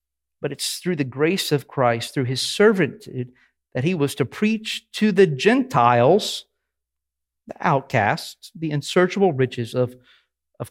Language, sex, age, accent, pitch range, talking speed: English, male, 50-69, American, 125-180 Hz, 140 wpm